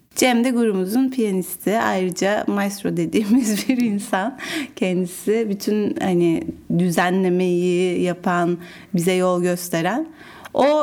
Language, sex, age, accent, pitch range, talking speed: Turkish, female, 30-49, native, 190-260 Hz, 100 wpm